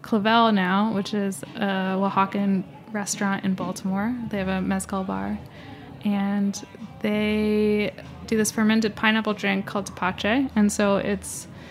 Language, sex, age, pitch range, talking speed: English, female, 10-29, 190-215 Hz, 135 wpm